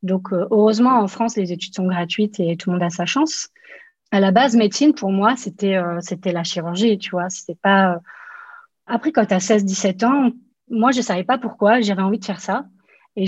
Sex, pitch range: female, 185-235 Hz